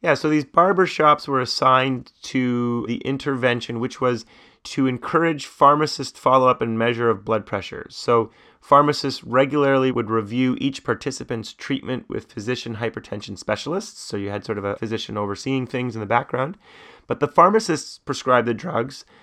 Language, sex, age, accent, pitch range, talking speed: English, male, 30-49, American, 115-135 Hz, 155 wpm